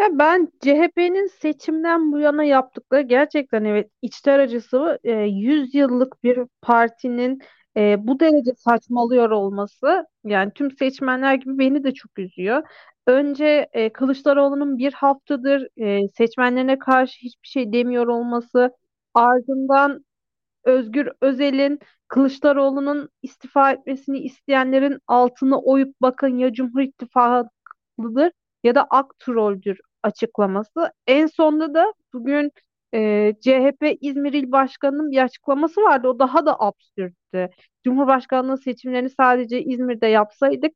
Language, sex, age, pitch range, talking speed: Turkish, female, 40-59, 235-285 Hz, 105 wpm